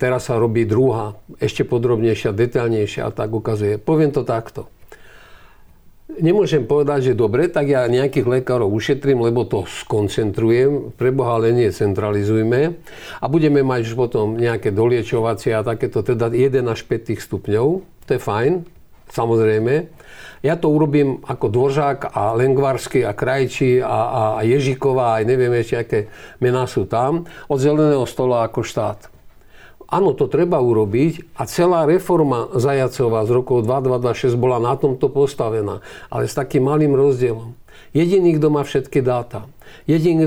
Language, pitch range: Slovak, 115-145 Hz